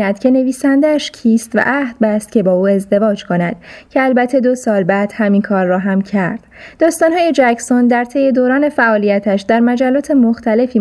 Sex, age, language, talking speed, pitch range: female, 20-39, Persian, 165 wpm, 200-255 Hz